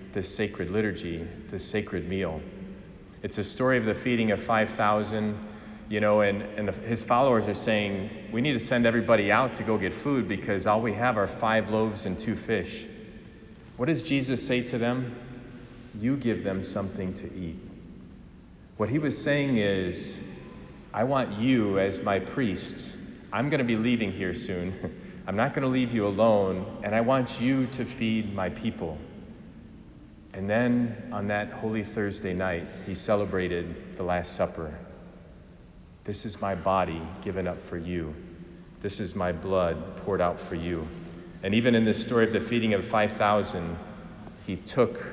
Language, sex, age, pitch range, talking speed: English, male, 40-59, 95-110 Hz, 165 wpm